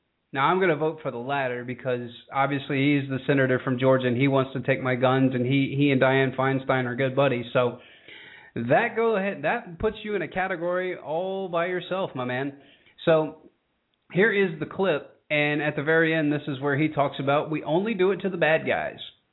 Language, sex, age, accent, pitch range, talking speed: English, male, 30-49, American, 130-170 Hz, 215 wpm